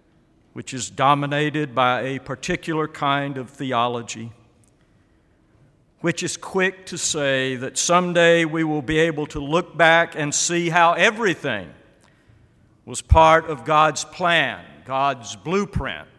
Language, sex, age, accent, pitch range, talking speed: English, male, 50-69, American, 130-165 Hz, 125 wpm